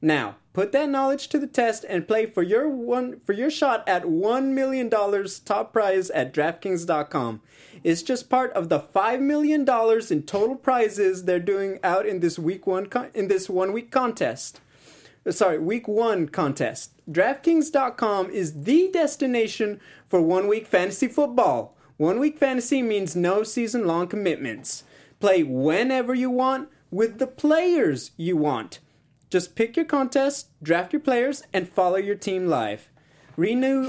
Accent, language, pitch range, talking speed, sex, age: American, English, 180-260 Hz, 155 wpm, male, 30-49